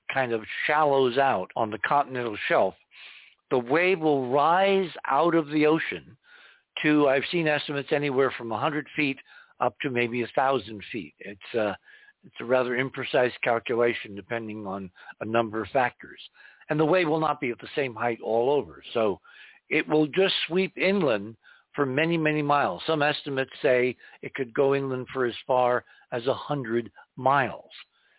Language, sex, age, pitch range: English, male, 60-79, 115-155 Hz